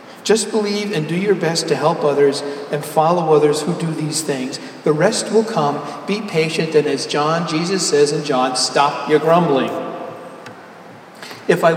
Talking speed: 175 wpm